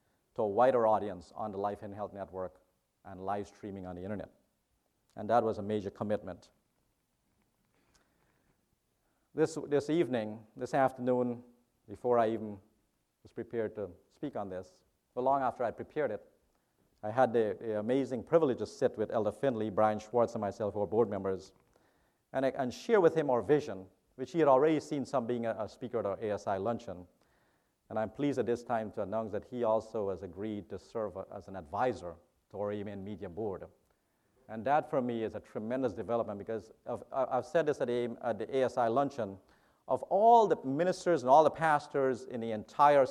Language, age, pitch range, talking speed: English, 50-69, 100-130 Hz, 190 wpm